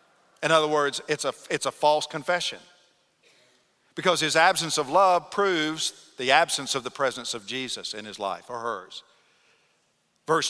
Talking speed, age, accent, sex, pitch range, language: 160 wpm, 50-69, American, male, 155-195 Hz, English